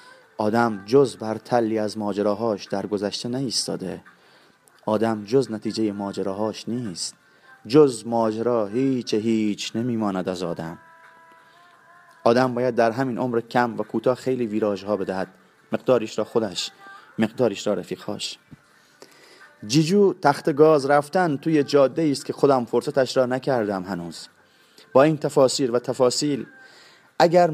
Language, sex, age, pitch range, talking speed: Persian, male, 30-49, 110-140 Hz, 130 wpm